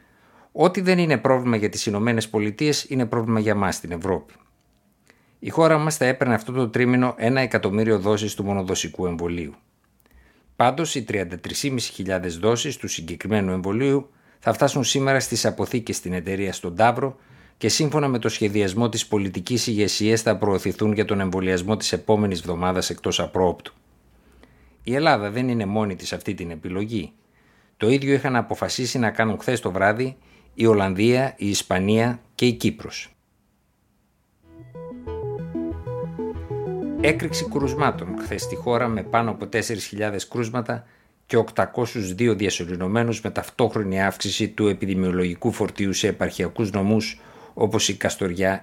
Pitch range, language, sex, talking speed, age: 95-120 Hz, Greek, male, 135 wpm, 60-79